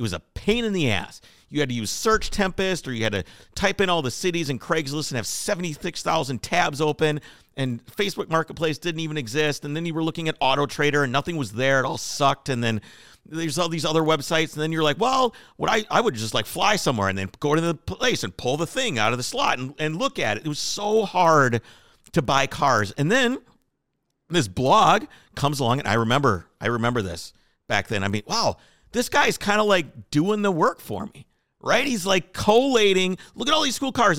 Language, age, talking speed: English, 50-69, 235 wpm